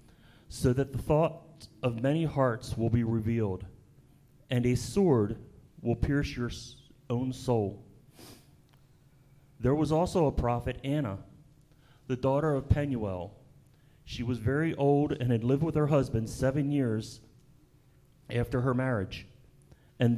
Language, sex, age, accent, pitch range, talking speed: English, male, 40-59, American, 115-140 Hz, 130 wpm